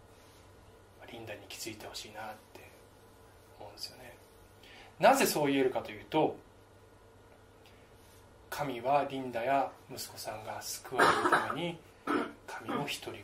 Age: 20-39